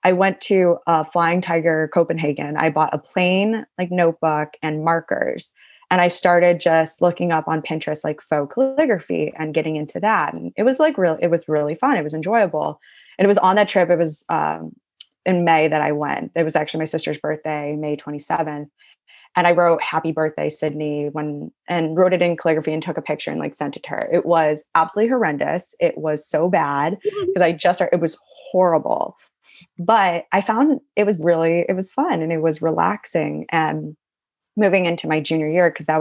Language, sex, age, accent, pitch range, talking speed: English, female, 20-39, American, 150-175 Hz, 205 wpm